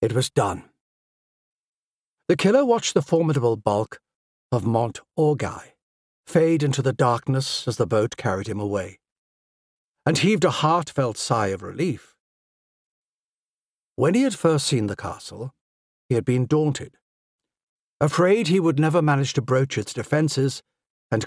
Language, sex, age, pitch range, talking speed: English, male, 60-79, 120-170 Hz, 140 wpm